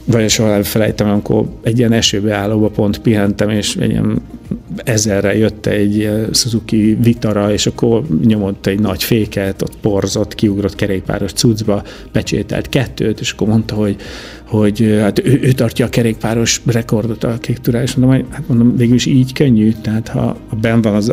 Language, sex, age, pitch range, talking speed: Hungarian, male, 50-69, 105-120 Hz, 170 wpm